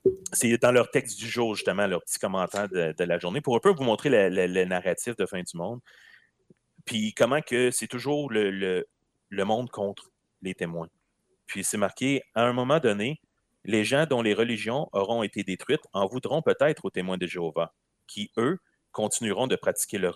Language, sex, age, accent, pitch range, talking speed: French, male, 30-49, Canadian, 100-130 Hz, 190 wpm